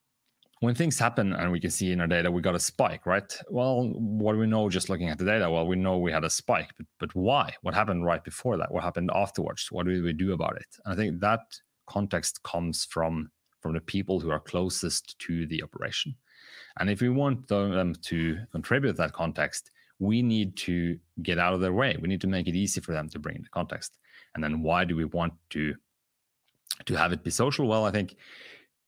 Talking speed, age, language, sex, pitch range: 230 wpm, 30-49, English, male, 85-110 Hz